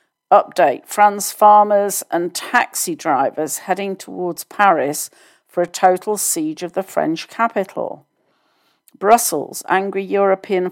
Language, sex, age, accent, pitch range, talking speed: English, female, 50-69, British, 175-210 Hz, 110 wpm